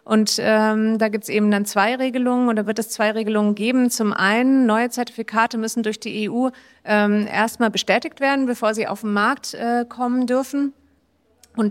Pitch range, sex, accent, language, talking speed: 210-245 Hz, female, German, German, 185 wpm